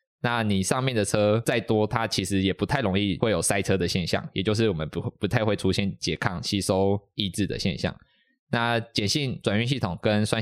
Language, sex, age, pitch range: Chinese, male, 20-39, 100-120 Hz